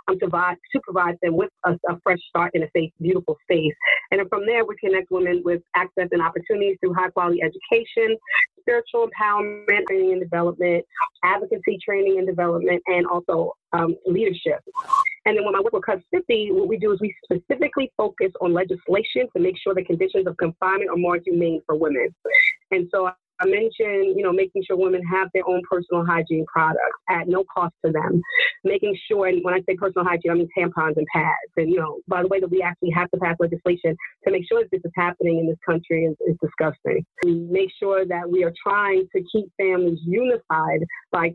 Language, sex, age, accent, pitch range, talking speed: English, female, 30-49, American, 170-200 Hz, 210 wpm